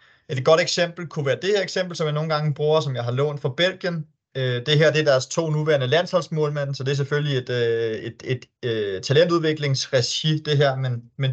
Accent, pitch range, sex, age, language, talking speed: native, 130-160 Hz, male, 30-49, Danish, 210 wpm